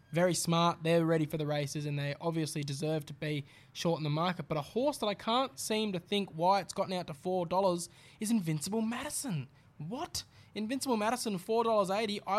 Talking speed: 190 wpm